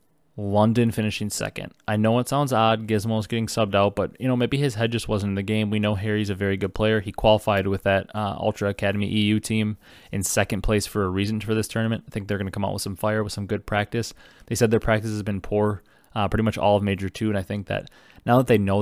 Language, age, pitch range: English, 20-39, 105-115 Hz